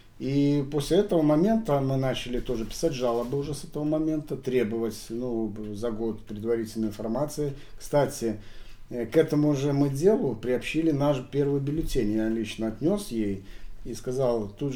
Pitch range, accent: 115-145 Hz, native